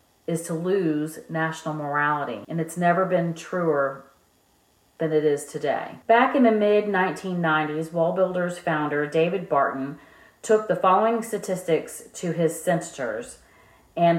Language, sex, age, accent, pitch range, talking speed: English, female, 40-59, American, 150-185 Hz, 130 wpm